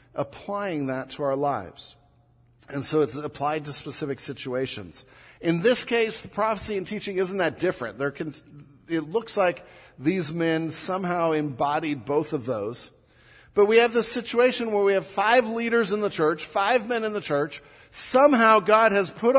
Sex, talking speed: male, 175 wpm